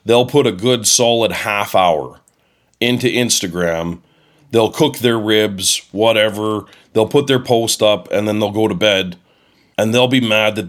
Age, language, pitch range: 30-49, English, 105-125 Hz